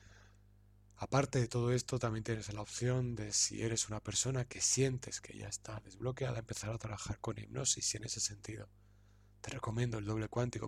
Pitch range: 100-115 Hz